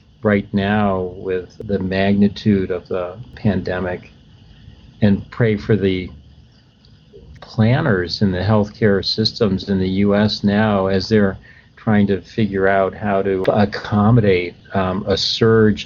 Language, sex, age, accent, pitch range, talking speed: English, male, 50-69, American, 95-110 Hz, 125 wpm